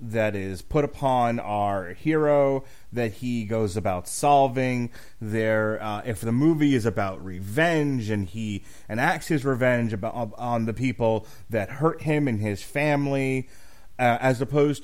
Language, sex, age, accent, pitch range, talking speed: English, male, 30-49, American, 110-150 Hz, 140 wpm